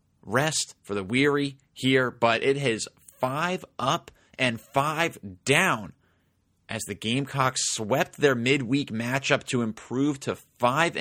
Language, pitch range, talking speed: English, 105-135 Hz, 130 wpm